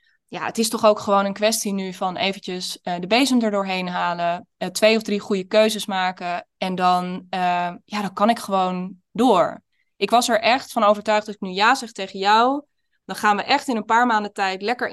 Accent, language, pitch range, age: Dutch, Dutch, 190-225 Hz, 20-39